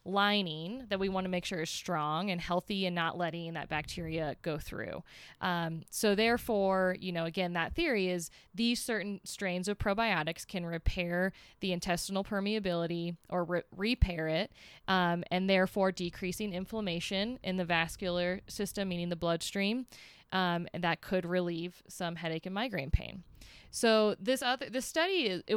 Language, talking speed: English, 160 wpm